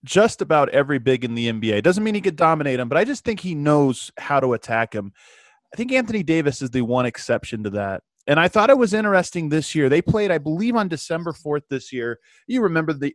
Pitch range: 120-170 Hz